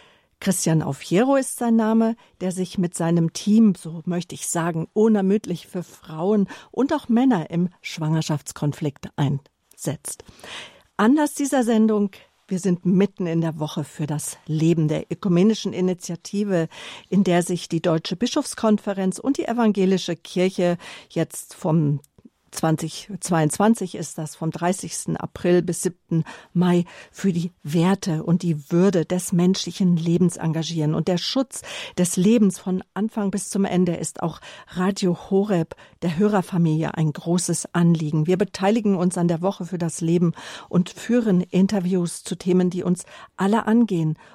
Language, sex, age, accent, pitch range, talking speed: German, female, 50-69, German, 165-200 Hz, 145 wpm